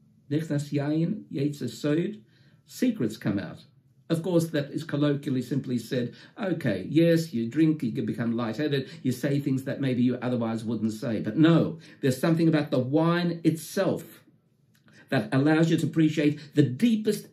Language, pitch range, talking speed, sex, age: English, 135-165 Hz, 145 wpm, male, 50-69